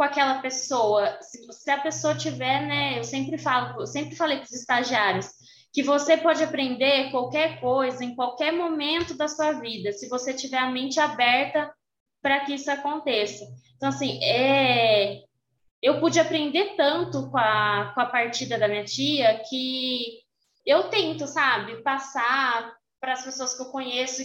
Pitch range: 240-295 Hz